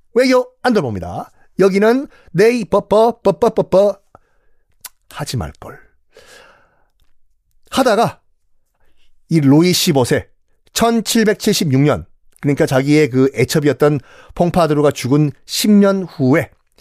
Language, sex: Korean, male